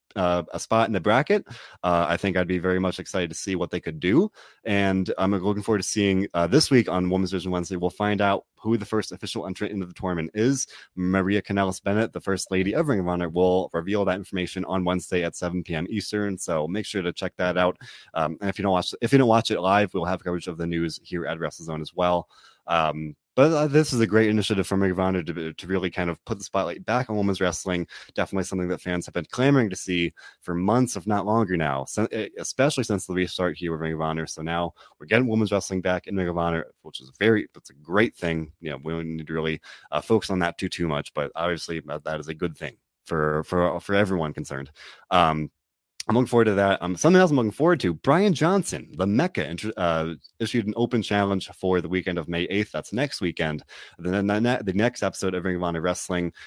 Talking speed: 245 wpm